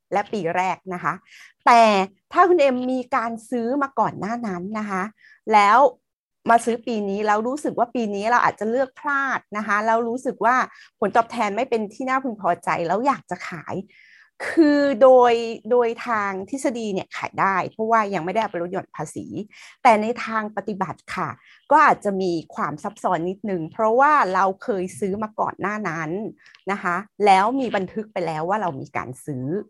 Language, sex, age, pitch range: English, female, 30-49, 185-240 Hz